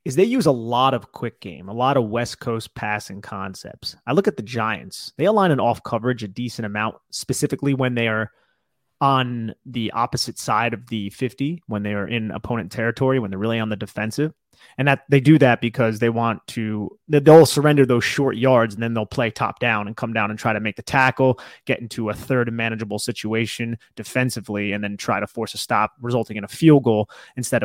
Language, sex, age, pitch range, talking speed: English, male, 30-49, 110-130 Hz, 215 wpm